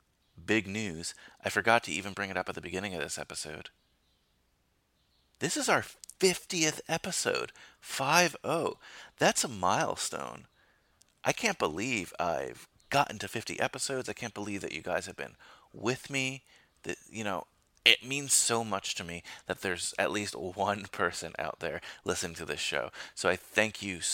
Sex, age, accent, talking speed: male, 30-49, American, 165 wpm